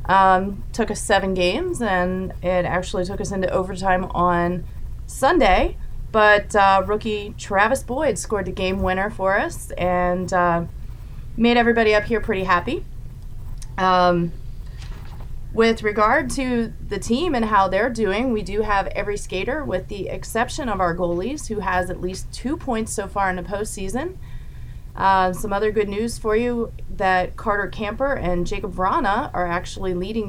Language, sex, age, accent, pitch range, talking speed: English, female, 30-49, American, 180-210 Hz, 160 wpm